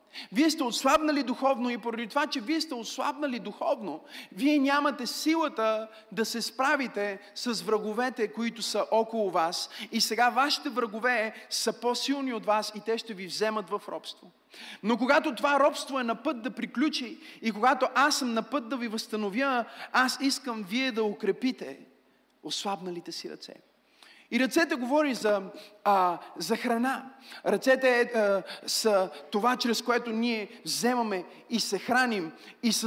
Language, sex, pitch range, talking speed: Bulgarian, male, 205-250 Hz, 155 wpm